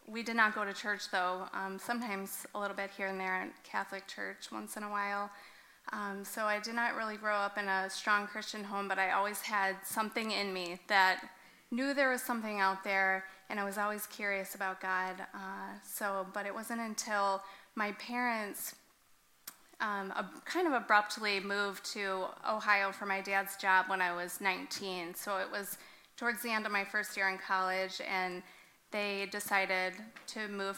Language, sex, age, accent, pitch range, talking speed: English, female, 30-49, American, 195-215 Hz, 190 wpm